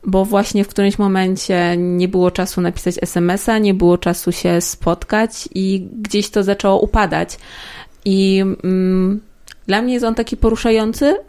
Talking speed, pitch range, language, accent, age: 145 wpm, 195-225 Hz, Polish, native, 20-39